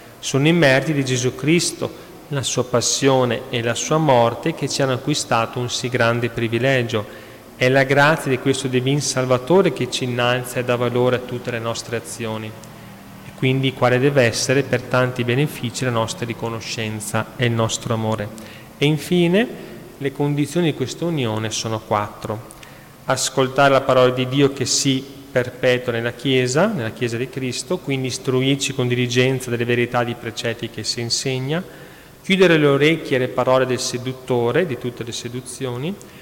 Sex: male